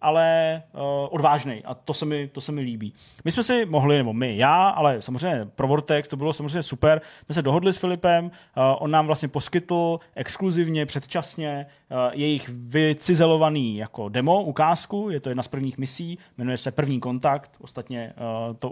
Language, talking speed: Czech, 185 wpm